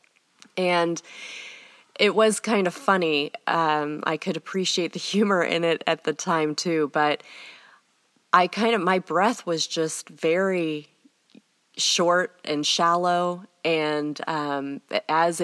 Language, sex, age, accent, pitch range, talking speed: English, female, 20-39, American, 150-180 Hz, 130 wpm